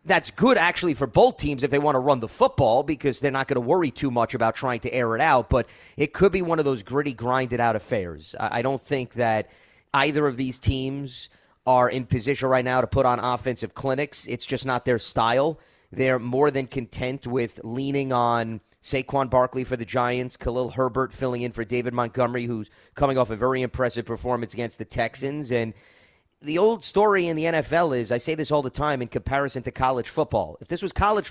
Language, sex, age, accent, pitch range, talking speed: English, male, 30-49, American, 120-150 Hz, 215 wpm